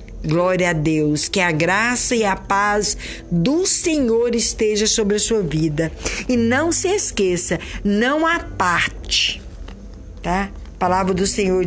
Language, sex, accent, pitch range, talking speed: Portuguese, female, Brazilian, 175-240 Hz, 140 wpm